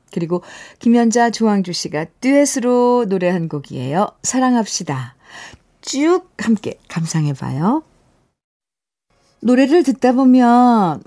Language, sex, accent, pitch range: Korean, female, native, 175-255 Hz